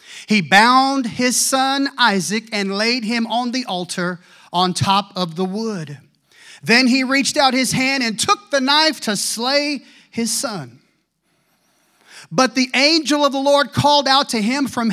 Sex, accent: male, American